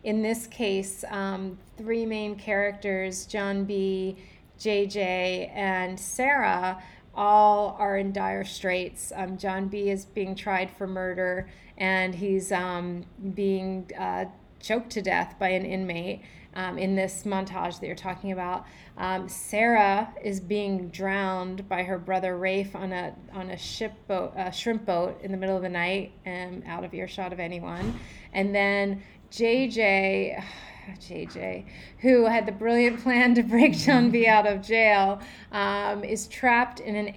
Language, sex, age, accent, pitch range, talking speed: English, female, 30-49, American, 185-210 Hz, 155 wpm